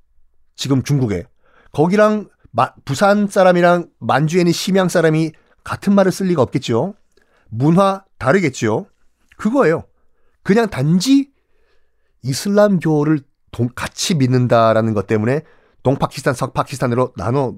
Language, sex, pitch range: Korean, male, 125-195 Hz